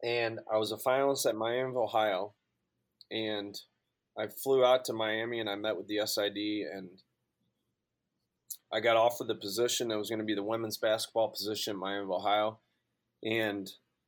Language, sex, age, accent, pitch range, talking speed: English, male, 30-49, American, 100-115 Hz, 165 wpm